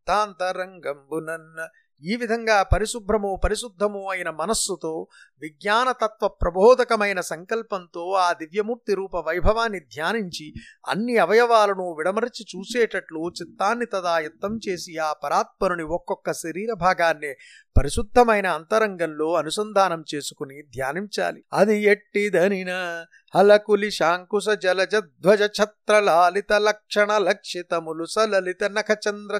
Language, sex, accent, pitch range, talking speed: Telugu, male, native, 180-210 Hz, 75 wpm